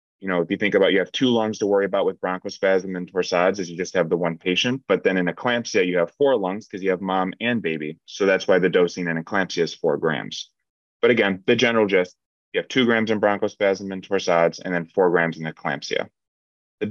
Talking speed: 240 wpm